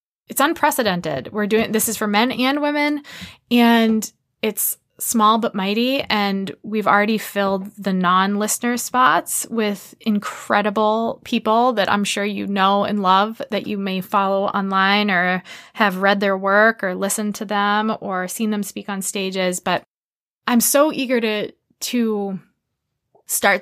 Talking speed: 150 wpm